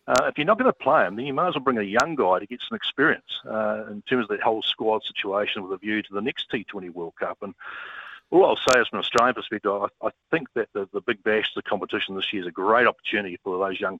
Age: 40-59